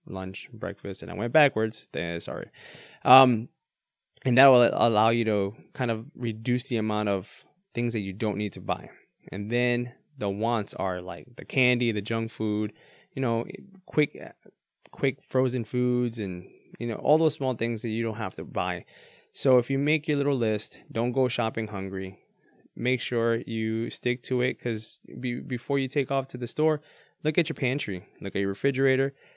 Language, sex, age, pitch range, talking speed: English, male, 20-39, 100-130 Hz, 185 wpm